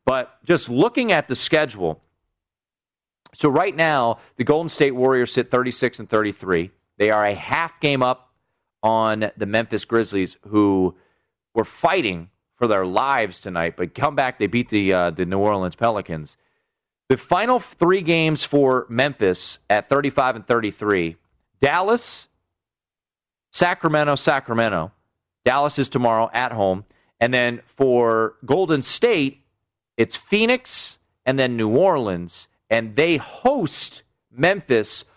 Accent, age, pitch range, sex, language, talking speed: American, 40-59, 110-165 Hz, male, English, 135 wpm